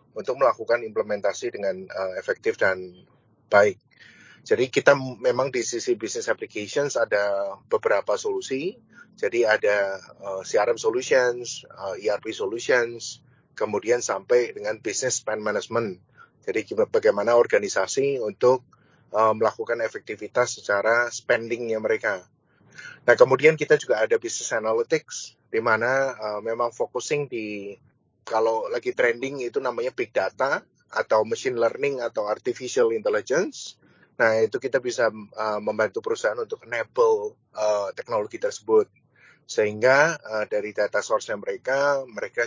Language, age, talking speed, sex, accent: Indonesian, 20-39, 125 wpm, male, native